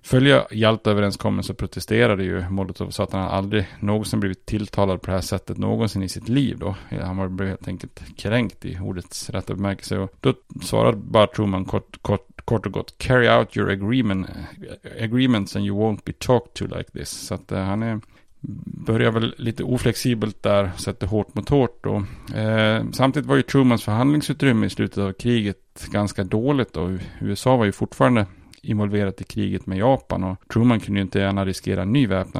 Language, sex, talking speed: Swedish, male, 185 wpm